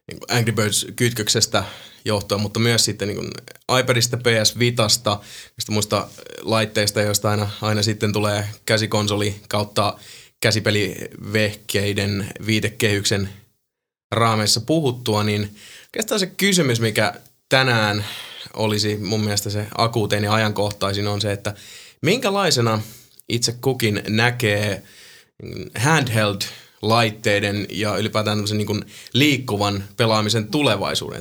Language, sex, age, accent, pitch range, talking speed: Finnish, male, 20-39, native, 105-115 Hz, 95 wpm